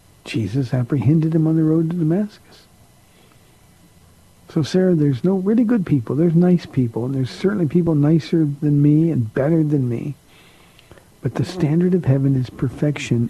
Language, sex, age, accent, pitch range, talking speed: English, male, 50-69, American, 130-165 Hz, 160 wpm